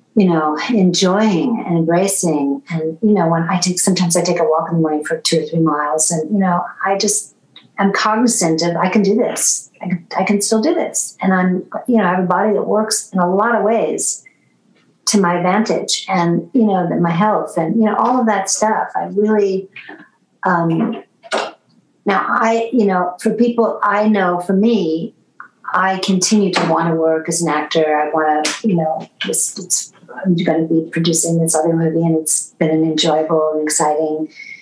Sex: female